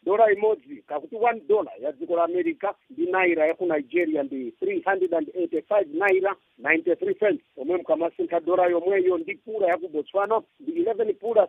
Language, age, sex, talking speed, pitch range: English, 50-69, male, 150 wpm, 170-245 Hz